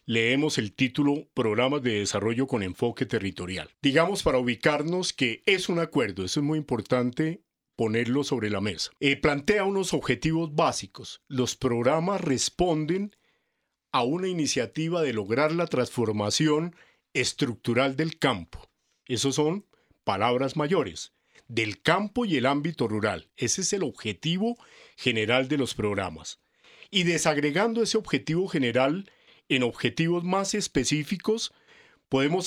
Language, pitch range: Spanish, 125-175 Hz